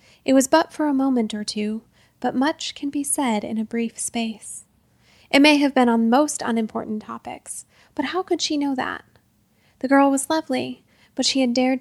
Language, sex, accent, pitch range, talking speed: English, female, American, 225-265 Hz, 200 wpm